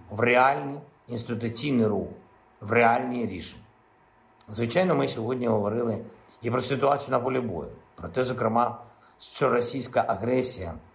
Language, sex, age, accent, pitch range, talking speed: Ukrainian, male, 50-69, native, 105-120 Hz, 125 wpm